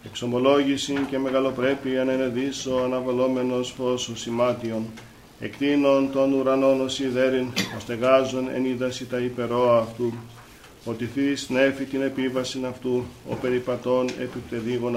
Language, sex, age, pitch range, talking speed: Greek, male, 50-69, 125-135 Hz, 110 wpm